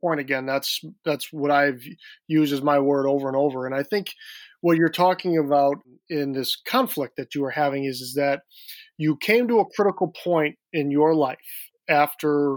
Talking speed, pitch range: 190 wpm, 145-185 Hz